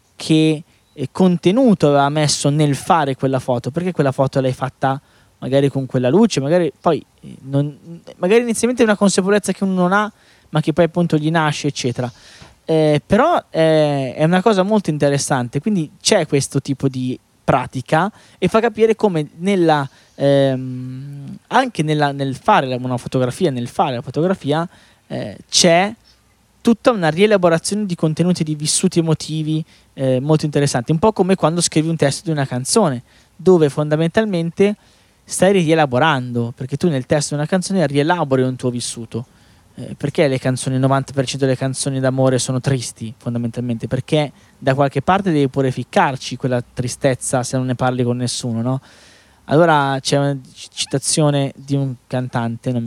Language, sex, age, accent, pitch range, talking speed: Italian, male, 20-39, native, 130-170 Hz, 160 wpm